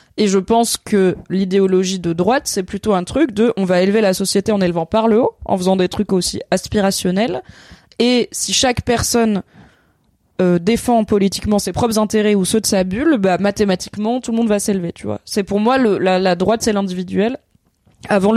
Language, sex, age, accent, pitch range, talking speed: French, female, 20-39, French, 185-220 Hz, 205 wpm